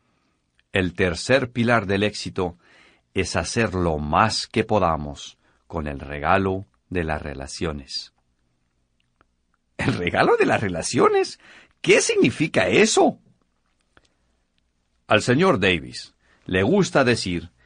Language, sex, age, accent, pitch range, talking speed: Spanish, male, 50-69, Mexican, 75-120 Hz, 105 wpm